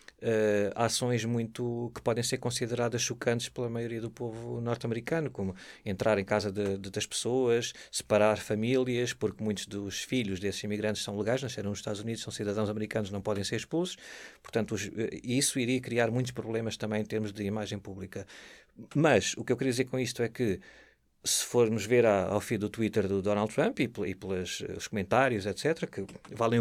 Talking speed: 175 wpm